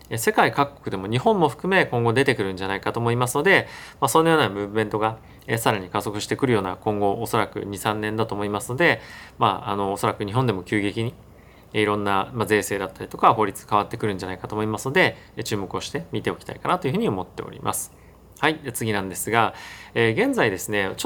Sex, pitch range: male, 100-130 Hz